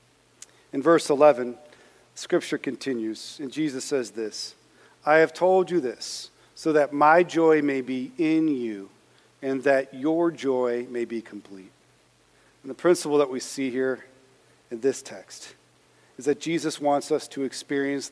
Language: English